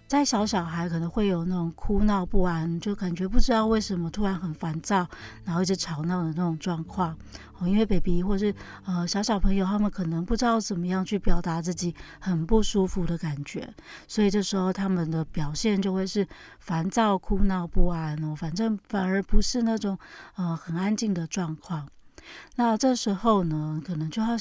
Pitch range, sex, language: 165-205 Hz, female, Chinese